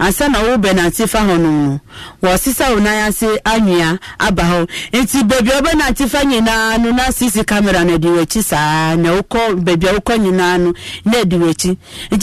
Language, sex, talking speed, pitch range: English, female, 165 wpm, 175-230 Hz